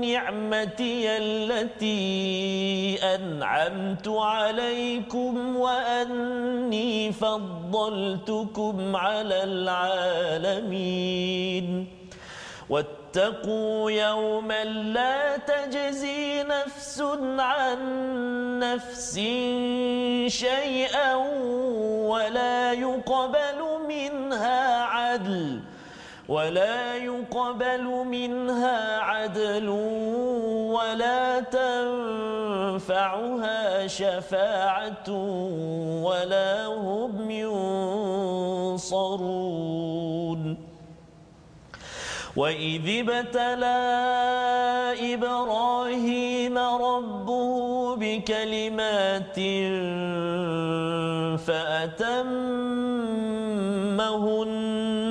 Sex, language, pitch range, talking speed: male, Malayalam, 190-245 Hz, 40 wpm